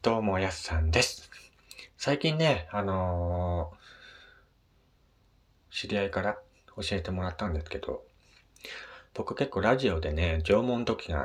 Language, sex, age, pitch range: Japanese, male, 40-59, 80-110 Hz